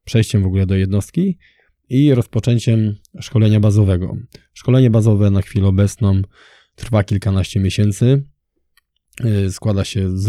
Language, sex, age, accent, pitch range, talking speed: Polish, male, 20-39, native, 100-120 Hz, 115 wpm